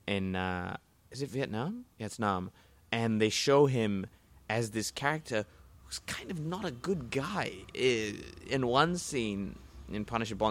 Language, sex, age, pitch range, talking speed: English, male, 20-39, 95-115 Hz, 150 wpm